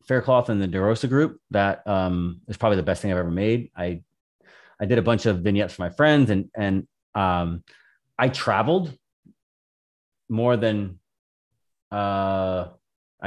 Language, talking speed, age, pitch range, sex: English, 150 wpm, 30-49, 95-125 Hz, male